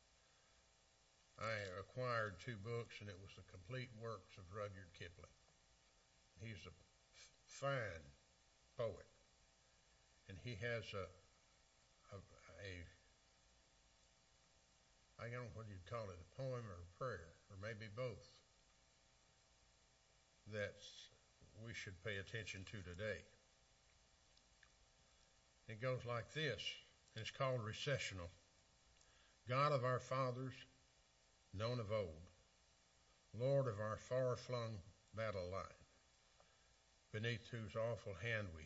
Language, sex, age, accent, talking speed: English, male, 60-79, American, 110 wpm